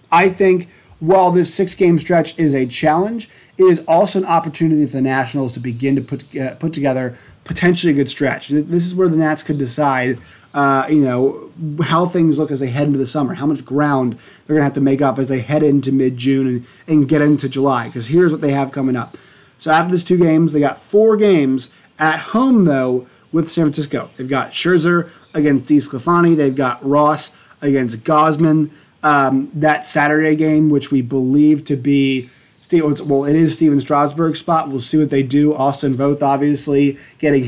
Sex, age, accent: male, 30-49, American